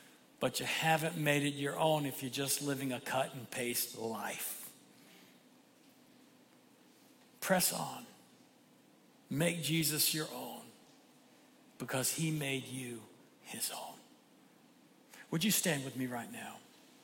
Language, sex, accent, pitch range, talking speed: English, male, American, 145-185 Hz, 115 wpm